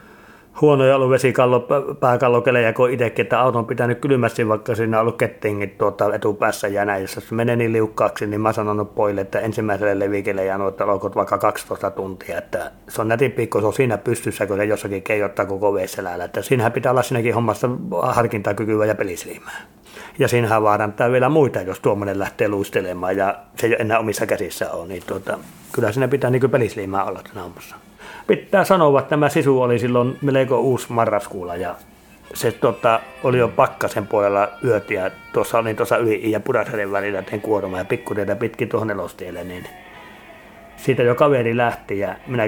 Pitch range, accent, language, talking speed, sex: 105-130 Hz, native, Finnish, 170 wpm, male